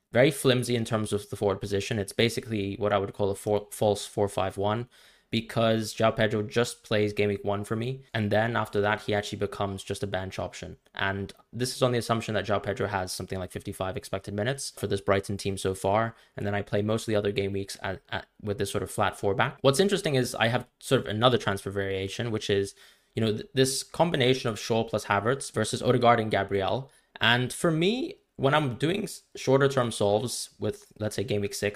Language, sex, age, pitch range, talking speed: English, male, 20-39, 100-120 Hz, 225 wpm